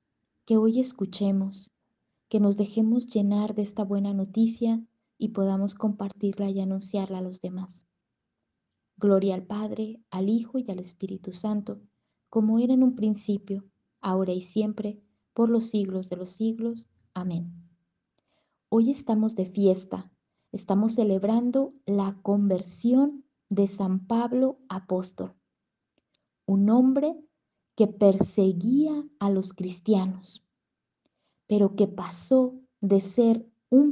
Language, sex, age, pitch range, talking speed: Spanish, female, 20-39, 195-235 Hz, 120 wpm